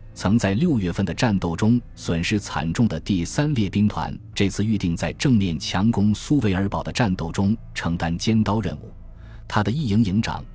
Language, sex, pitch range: Chinese, male, 85-110 Hz